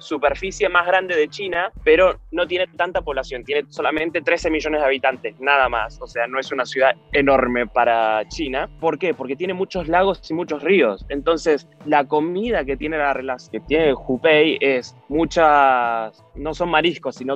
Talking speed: 175 wpm